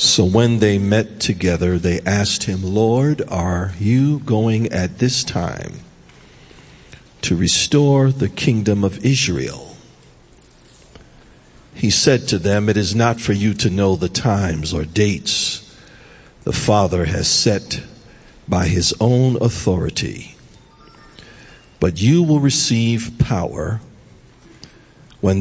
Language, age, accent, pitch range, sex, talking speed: English, 50-69, American, 95-125 Hz, male, 120 wpm